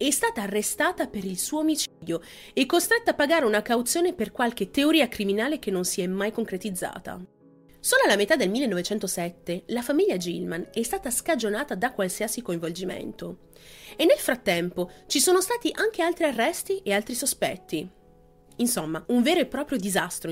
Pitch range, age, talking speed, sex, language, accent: 185-300 Hz, 30-49, 160 wpm, female, Italian, native